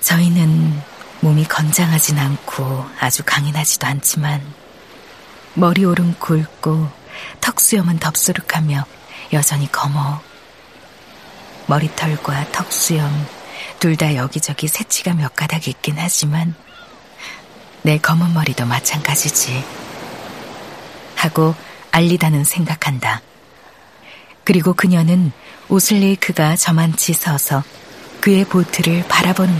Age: 40-59